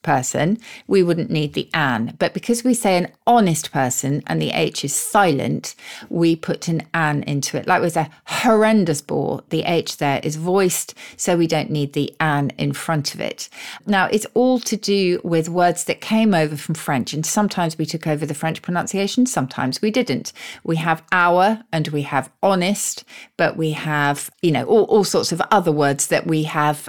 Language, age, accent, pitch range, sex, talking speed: English, 40-59, British, 150-185 Hz, female, 195 wpm